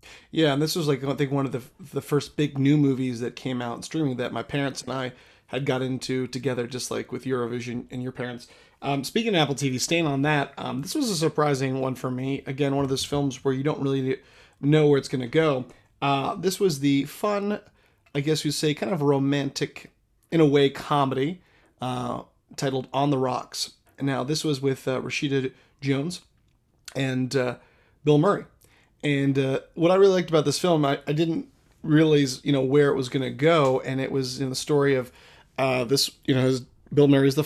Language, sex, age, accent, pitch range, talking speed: English, male, 30-49, American, 130-145 Hz, 215 wpm